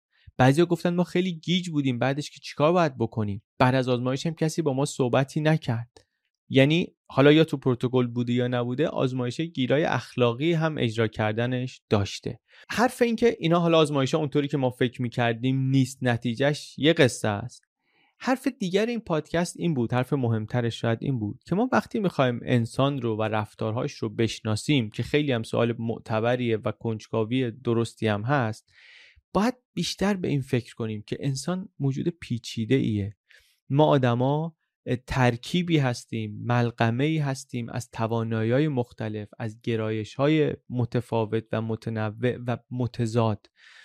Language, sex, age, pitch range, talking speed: Persian, male, 30-49, 115-155 Hz, 155 wpm